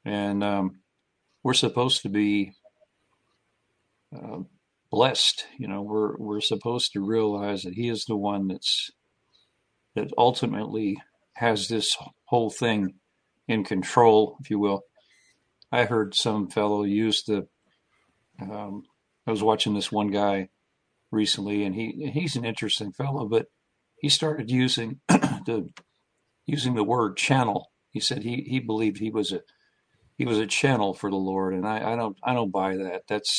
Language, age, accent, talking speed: English, 50-69, American, 155 wpm